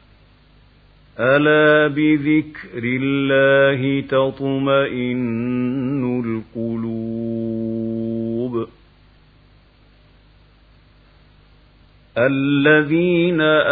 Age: 50-69